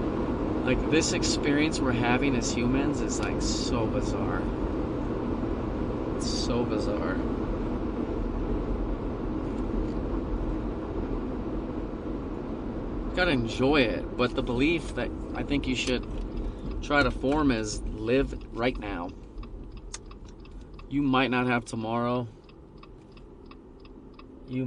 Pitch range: 110-135 Hz